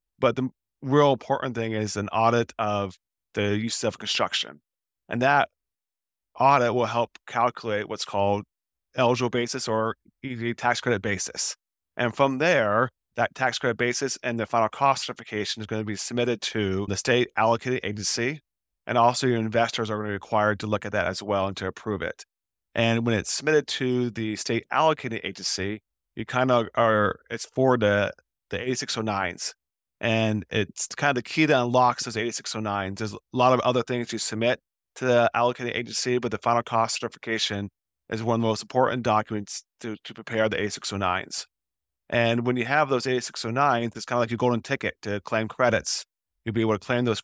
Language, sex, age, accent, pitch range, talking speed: English, male, 30-49, American, 105-125 Hz, 190 wpm